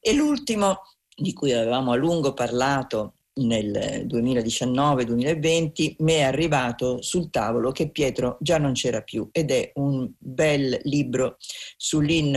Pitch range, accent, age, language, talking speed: 130-165 Hz, native, 50-69, Italian, 130 wpm